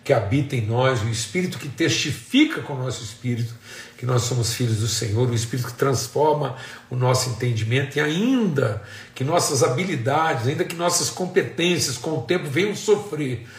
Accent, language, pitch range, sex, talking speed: Brazilian, Portuguese, 110-140 Hz, male, 170 wpm